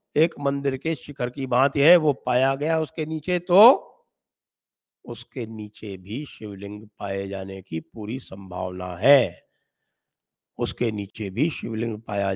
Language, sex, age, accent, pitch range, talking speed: English, male, 50-69, Indian, 120-170 Hz, 135 wpm